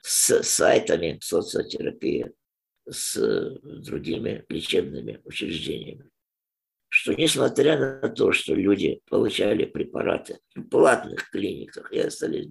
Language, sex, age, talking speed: Russian, male, 50-69, 95 wpm